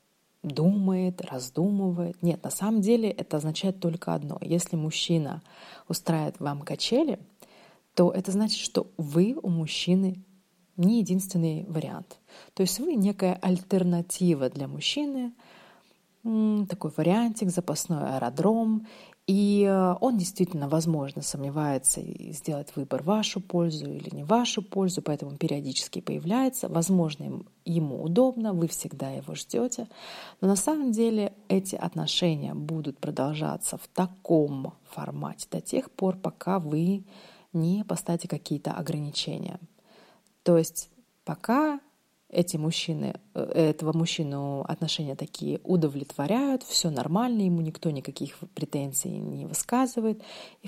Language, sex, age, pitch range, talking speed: Russian, female, 30-49, 160-200 Hz, 115 wpm